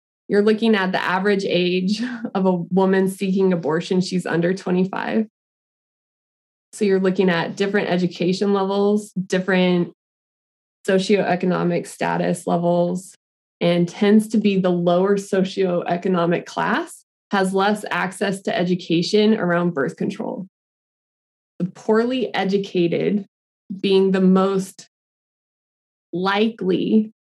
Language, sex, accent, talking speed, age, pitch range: English, female, American, 105 wpm, 20-39, 180-225 Hz